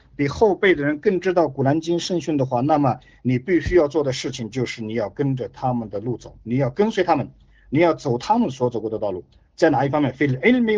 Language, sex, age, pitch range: Chinese, male, 50-69, 120-165 Hz